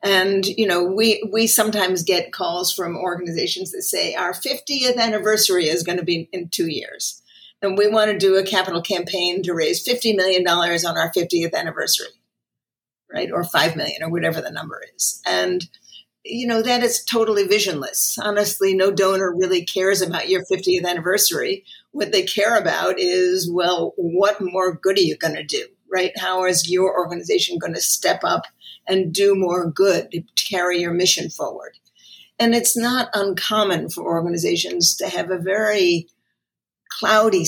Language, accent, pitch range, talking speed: English, American, 175-220 Hz, 170 wpm